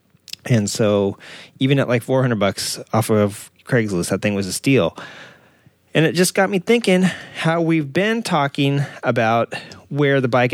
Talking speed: 165 wpm